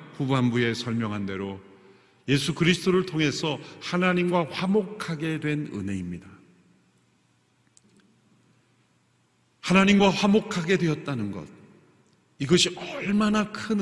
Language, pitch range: Korean, 130-185 Hz